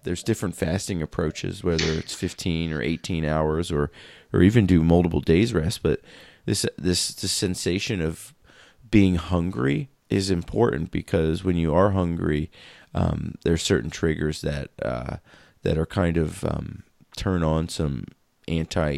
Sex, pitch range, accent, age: male, 80-95 Hz, American, 30-49